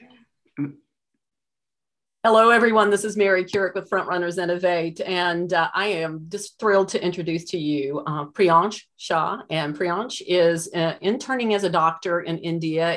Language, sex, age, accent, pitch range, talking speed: English, female, 40-59, American, 165-205 Hz, 150 wpm